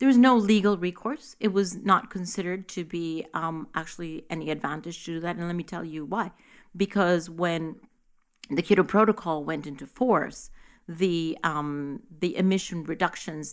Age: 40-59